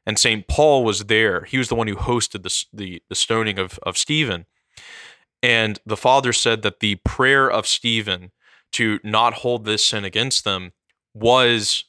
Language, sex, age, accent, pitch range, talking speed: English, male, 20-39, American, 100-125 Hz, 165 wpm